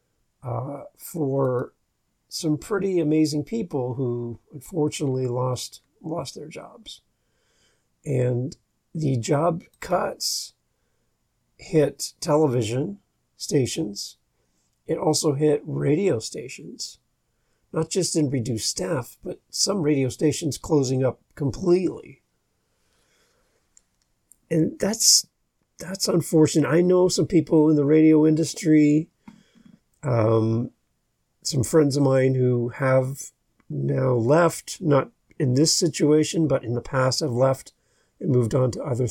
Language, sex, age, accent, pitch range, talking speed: English, male, 50-69, American, 125-160 Hz, 105 wpm